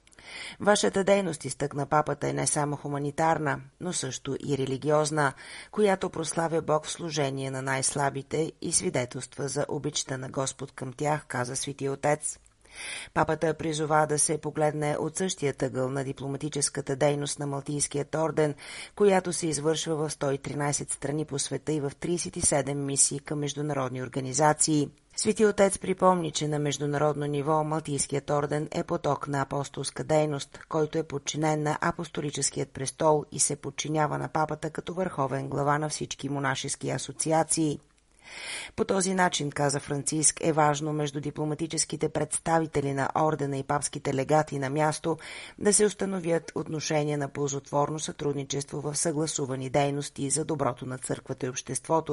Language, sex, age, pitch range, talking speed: Bulgarian, female, 30-49, 140-155 Hz, 145 wpm